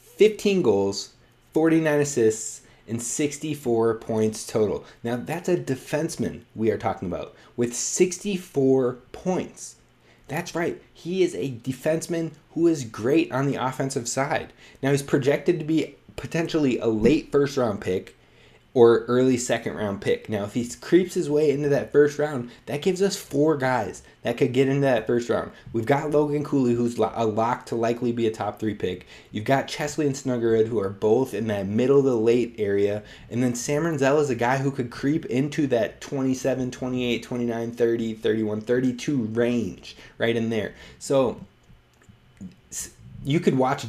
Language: English